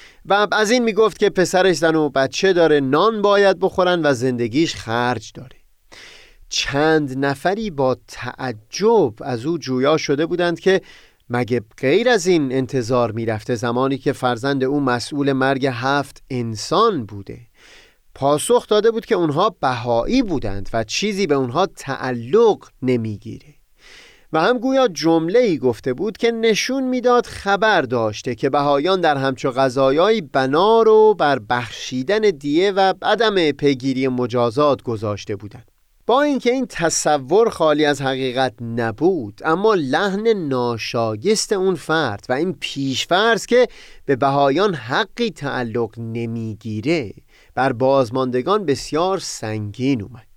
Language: Persian